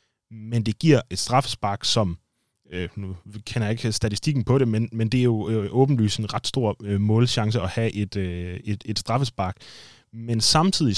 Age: 20-39